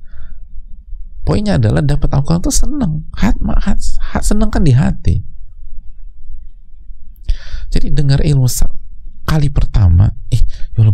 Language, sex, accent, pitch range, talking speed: Indonesian, male, native, 75-125 Hz, 90 wpm